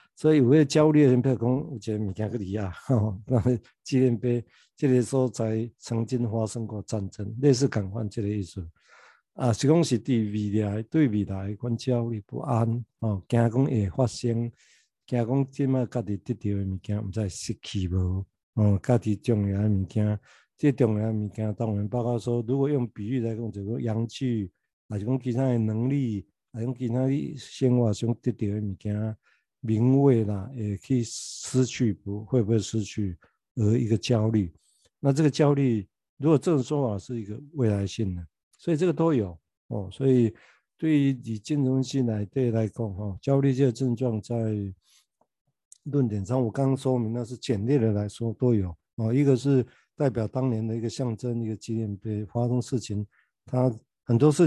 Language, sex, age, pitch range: Chinese, male, 60-79, 105-130 Hz